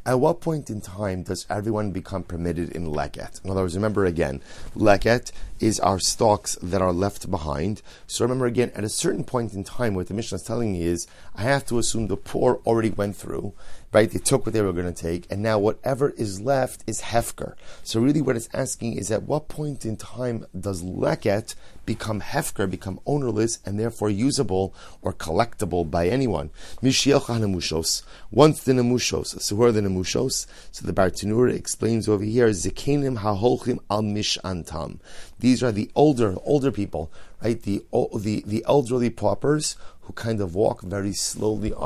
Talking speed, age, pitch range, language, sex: 185 wpm, 30-49, 95-120 Hz, English, male